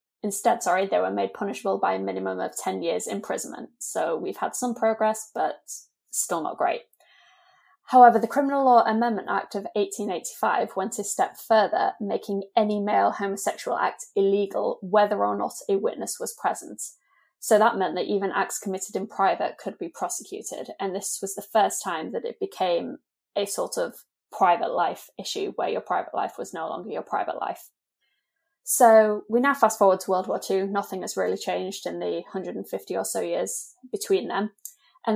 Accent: British